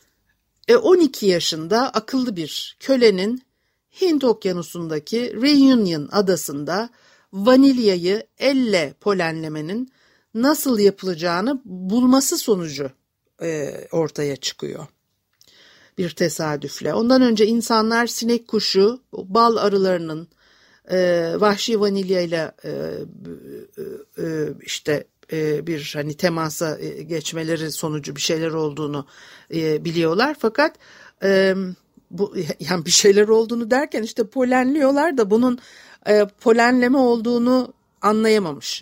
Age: 60-79